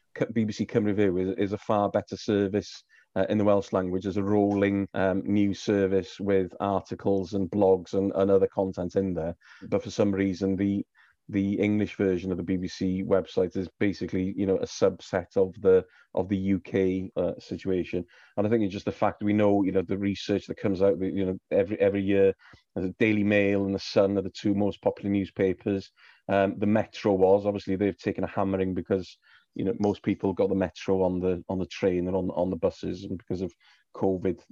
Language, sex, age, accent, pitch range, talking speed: English, male, 30-49, British, 95-110 Hz, 210 wpm